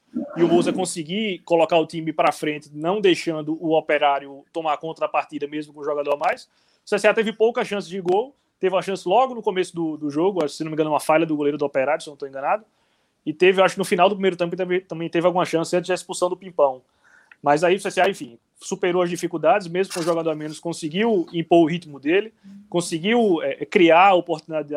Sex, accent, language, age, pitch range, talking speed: male, Brazilian, Portuguese, 20-39, 150-190 Hz, 235 wpm